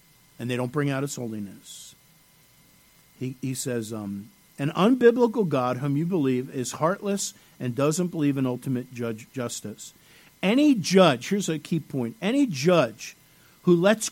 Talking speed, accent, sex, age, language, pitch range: 155 wpm, American, male, 50-69, English, 145-200 Hz